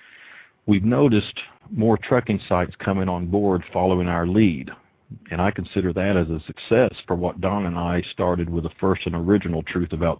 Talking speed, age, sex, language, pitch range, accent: 180 wpm, 50-69, male, English, 90-110 Hz, American